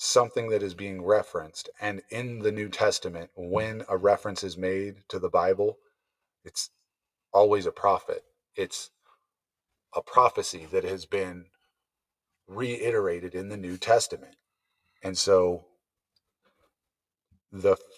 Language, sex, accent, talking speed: English, male, American, 120 wpm